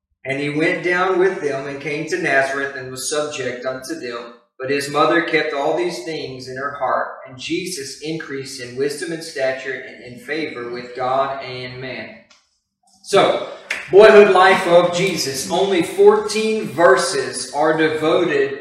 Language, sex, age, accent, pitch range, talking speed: English, male, 40-59, American, 135-190 Hz, 160 wpm